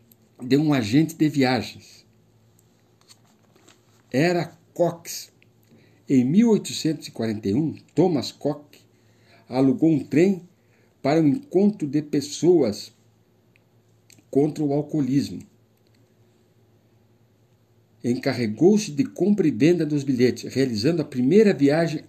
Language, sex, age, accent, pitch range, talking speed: Portuguese, male, 60-79, Brazilian, 115-155 Hz, 90 wpm